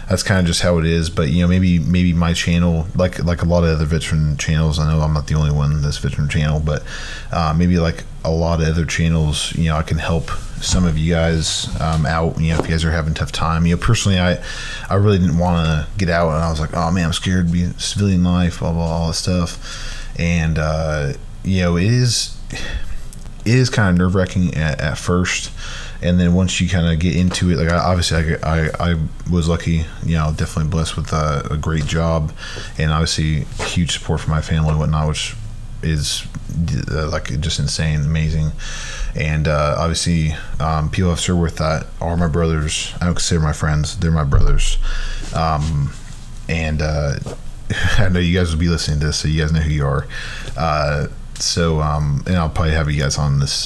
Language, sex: English, male